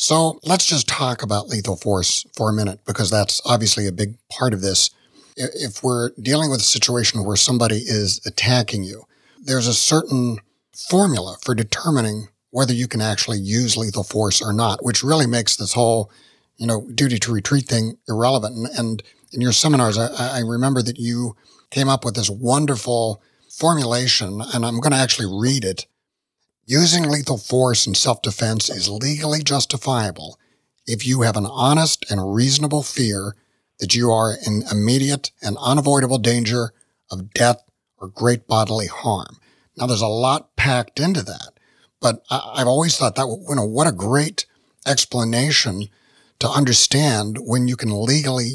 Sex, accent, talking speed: male, American, 160 wpm